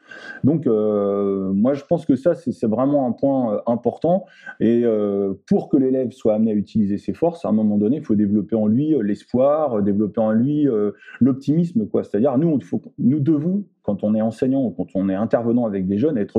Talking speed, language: 210 wpm, French